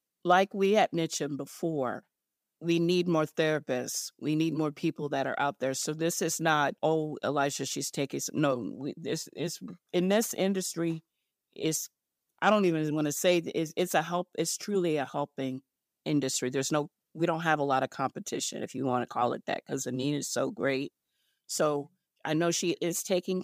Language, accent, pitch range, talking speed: English, American, 140-170 Hz, 195 wpm